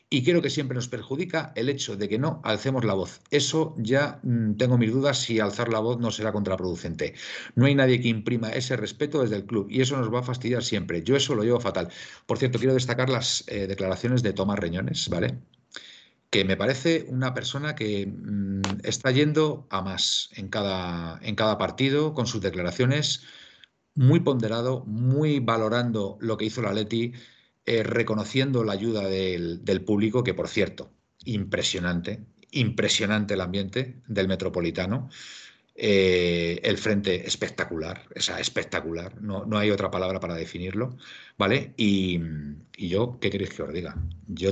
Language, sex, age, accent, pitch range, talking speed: Spanish, male, 50-69, Spanish, 95-130 Hz, 165 wpm